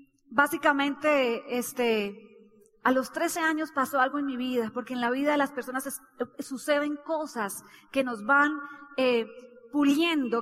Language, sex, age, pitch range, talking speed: Spanish, female, 30-49, 245-295 Hz, 150 wpm